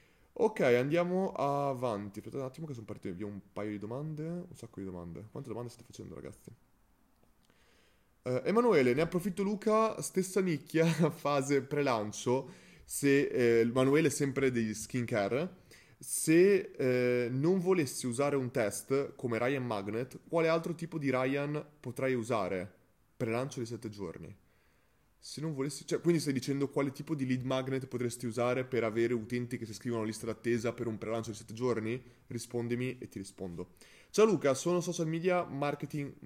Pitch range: 115-155 Hz